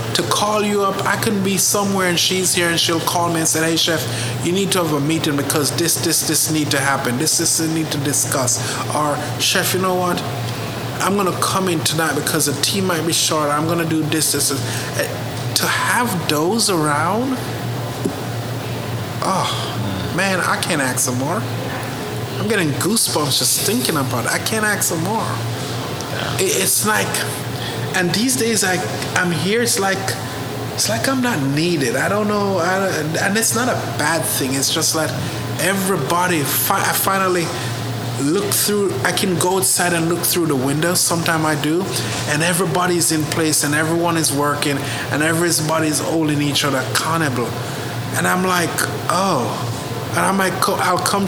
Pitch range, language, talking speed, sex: 130-175 Hz, English, 180 wpm, male